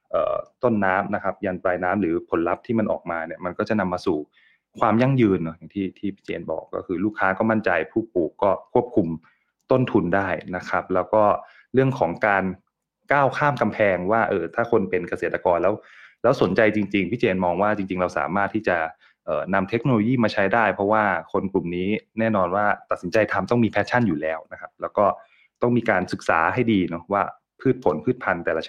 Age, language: 20-39, English